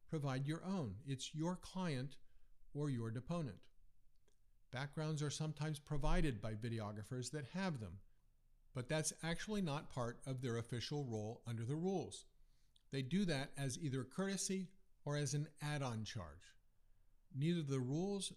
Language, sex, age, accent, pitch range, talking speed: English, male, 50-69, American, 120-150 Hz, 145 wpm